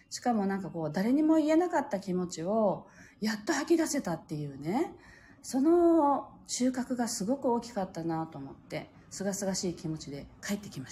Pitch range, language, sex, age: 160-250 Hz, Japanese, female, 40-59